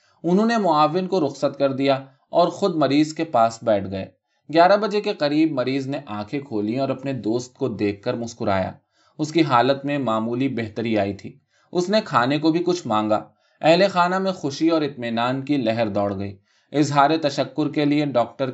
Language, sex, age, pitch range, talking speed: Urdu, male, 20-39, 110-155 Hz, 190 wpm